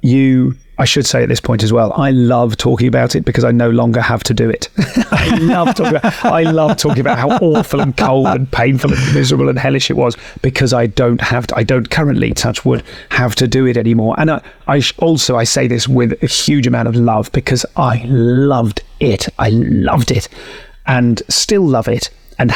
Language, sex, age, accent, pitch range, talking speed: Dutch, male, 30-49, British, 120-145 Hz, 210 wpm